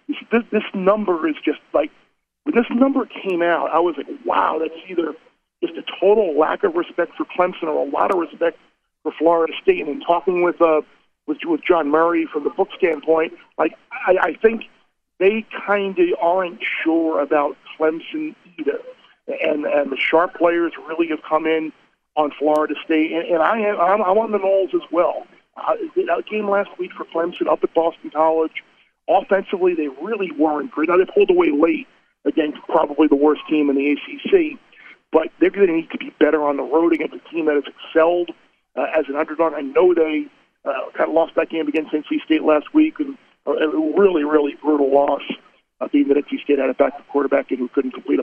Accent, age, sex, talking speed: American, 50-69, male, 210 wpm